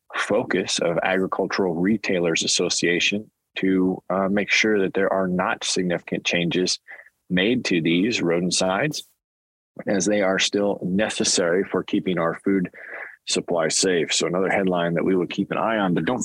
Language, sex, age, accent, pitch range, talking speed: English, male, 30-49, American, 90-105 Hz, 160 wpm